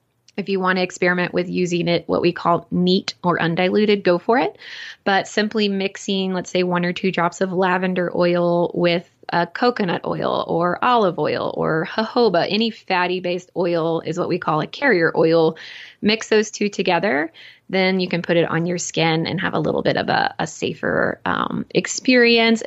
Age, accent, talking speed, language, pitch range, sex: 20-39, American, 190 wpm, English, 170-205 Hz, female